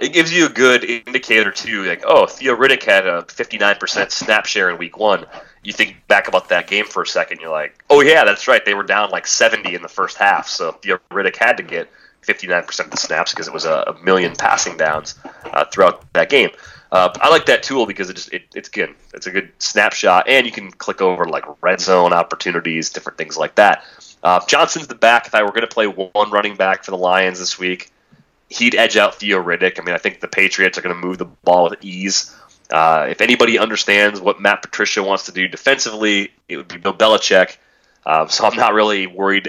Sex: male